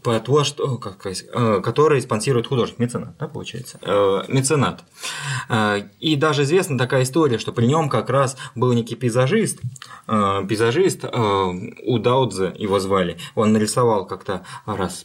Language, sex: Russian, male